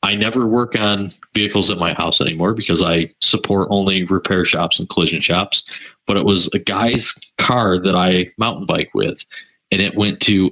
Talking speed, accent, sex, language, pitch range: 190 wpm, American, male, English, 90-105 Hz